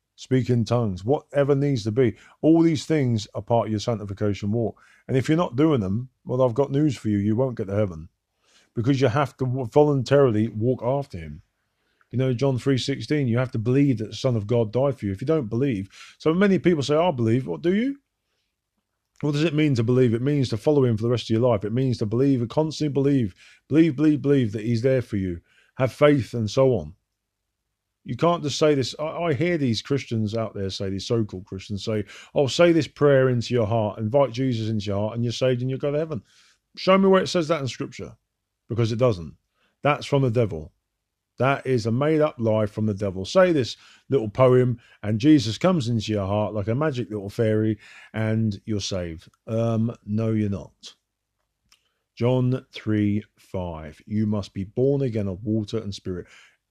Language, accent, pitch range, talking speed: English, British, 105-140 Hz, 210 wpm